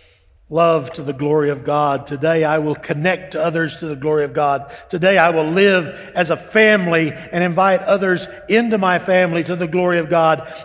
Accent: American